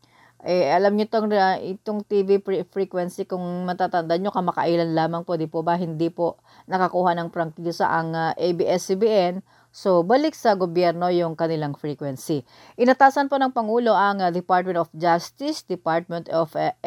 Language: English